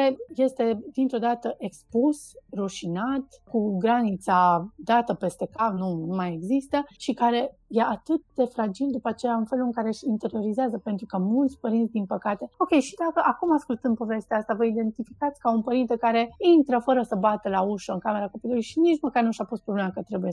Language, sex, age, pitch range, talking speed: Romanian, female, 30-49, 195-240 Hz, 190 wpm